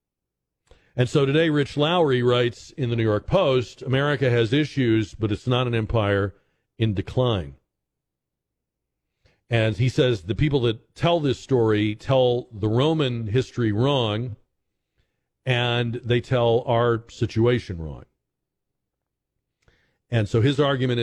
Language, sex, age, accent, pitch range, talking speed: English, male, 50-69, American, 110-140 Hz, 130 wpm